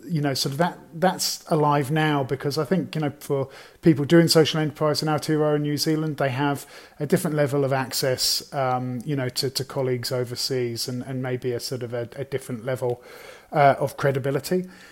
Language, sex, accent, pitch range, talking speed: English, male, British, 125-145 Hz, 195 wpm